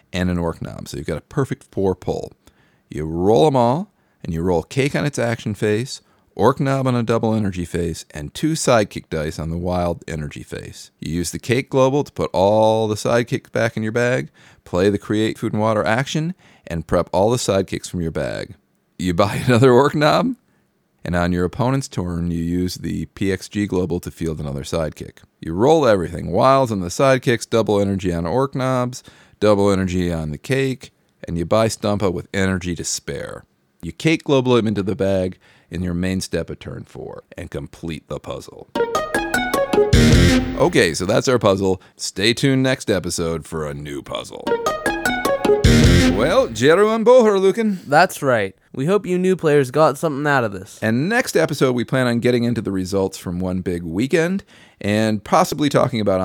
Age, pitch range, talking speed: 40-59, 90-135 Hz, 185 wpm